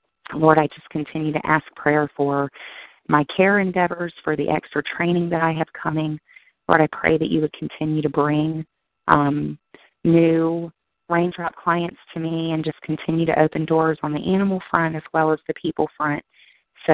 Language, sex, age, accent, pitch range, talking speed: English, female, 30-49, American, 145-165 Hz, 180 wpm